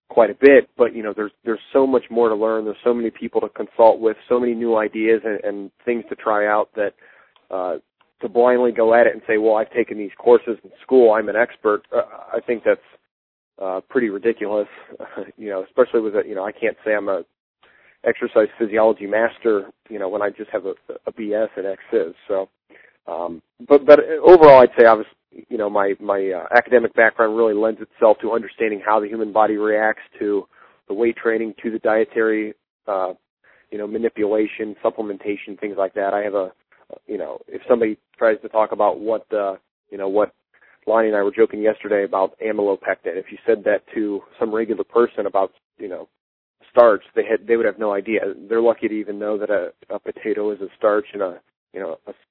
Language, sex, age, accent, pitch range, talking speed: English, male, 30-49, American, 105-125 Hz, 210 wpm